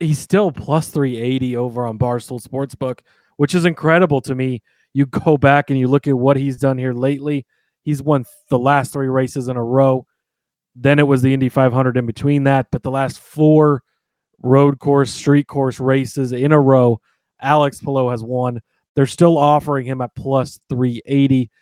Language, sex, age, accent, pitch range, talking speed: English, male, 30-49, American, 130-150 Hz, 180 wpm